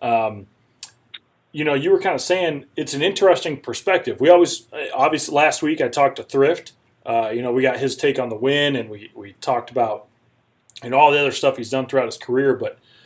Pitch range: 125-160 Hz